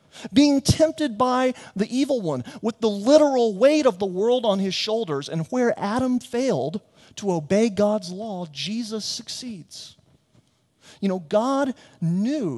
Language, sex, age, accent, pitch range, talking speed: English, male, 40-59, American, 125-185 Hz, 145 wpm